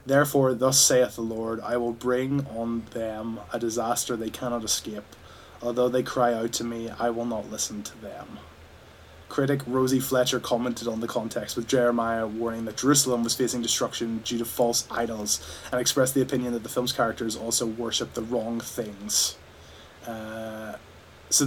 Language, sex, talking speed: English, male, 170 wpm